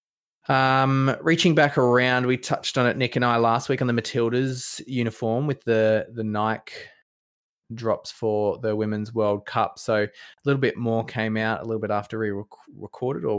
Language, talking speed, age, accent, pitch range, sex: English, 190 wpm, 20-39, Australian, 100-120 Hz, male